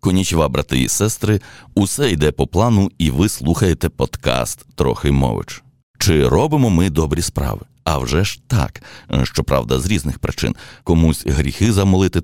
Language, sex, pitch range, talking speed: Ukrainian, male, 70-90 Hz, 150 wpm